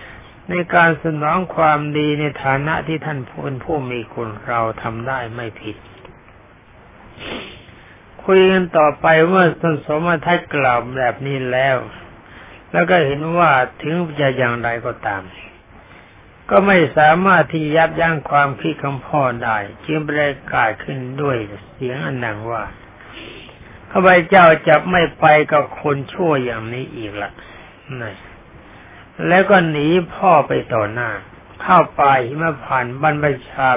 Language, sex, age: Thai, male, 60-79